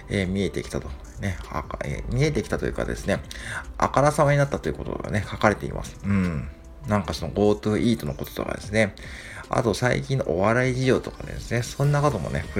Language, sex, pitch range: Japanese, male, 75-115 Hz